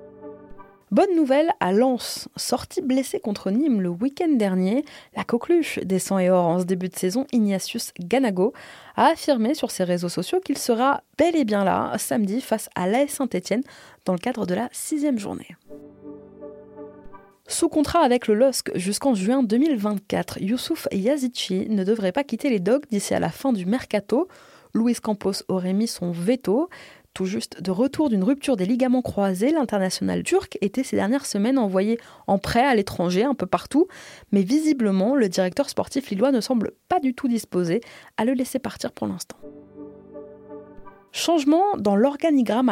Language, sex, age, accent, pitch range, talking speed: French, female, 20-39, French, 190-270 Hz, 170 wpm